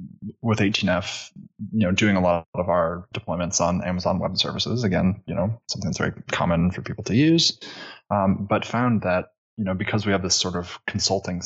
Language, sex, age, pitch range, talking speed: English, male, 20-39, 90-100 Hz, 195 wpm